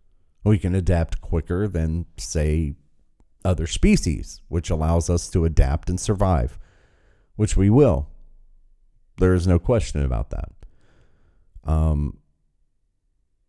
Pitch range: 75-105 Hz